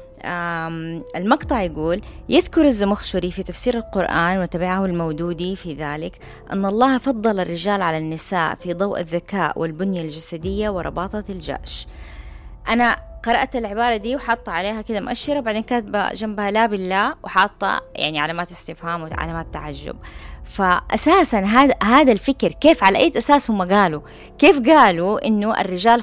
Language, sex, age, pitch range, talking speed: Arabic, female, 20-39, 170-240 Hz, 130 wpm